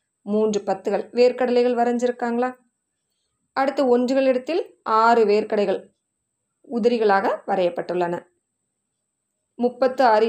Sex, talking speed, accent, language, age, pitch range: female, 75 wpm, native, Tamil, 20-39, 195-245 Hz